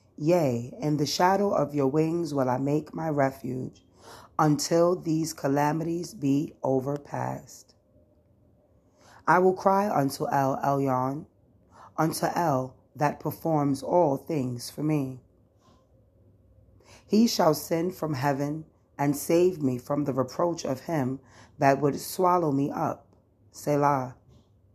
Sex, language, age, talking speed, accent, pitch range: female, English, 30-49, 120 wpm, American, 120-155 Hz